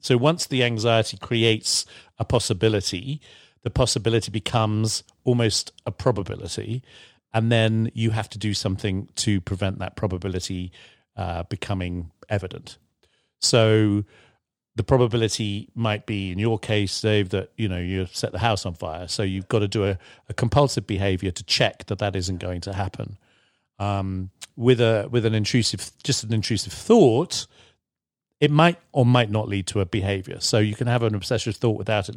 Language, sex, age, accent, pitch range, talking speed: English, male, 40-59, British, 100-120 Hz, 170 wpm